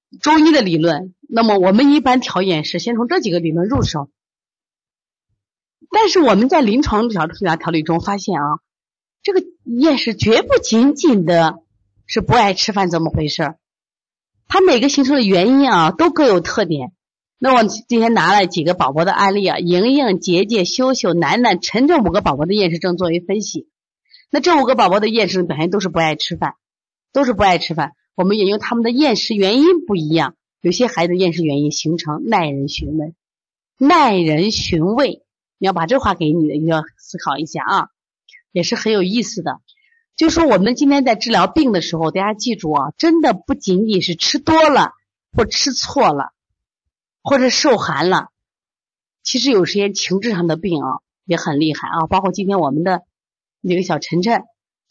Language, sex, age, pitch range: Chinese, female, 30-49, 170-255 Hz